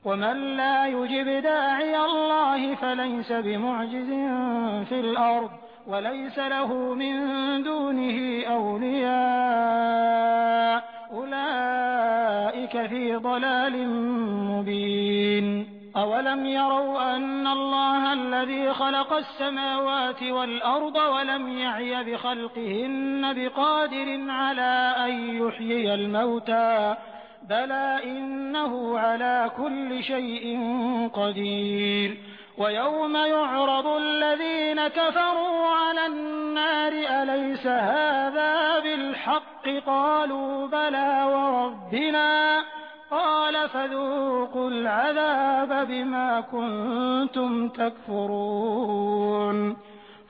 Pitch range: 230-275 Hz